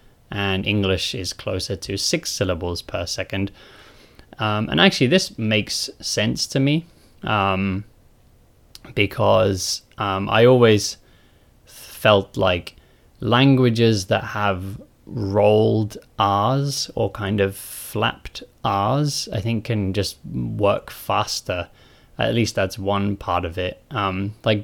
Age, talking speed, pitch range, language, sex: 20-39, 120 wpm, 95-115 Hz, English, male